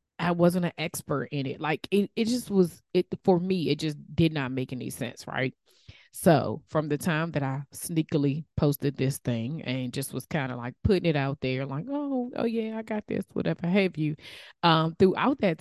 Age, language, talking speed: 20-39, English, 210 wpm